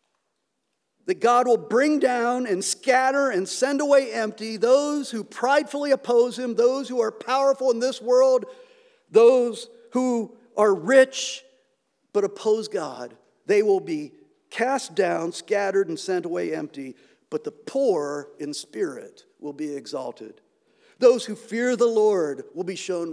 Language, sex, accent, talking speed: English, male, American, 145 wpm